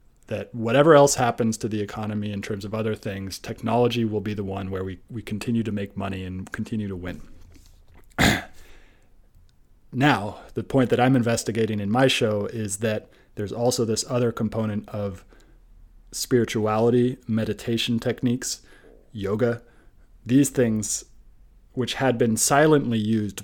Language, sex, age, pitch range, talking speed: English, male, 30-49, 100-115 Hz, 145 wpm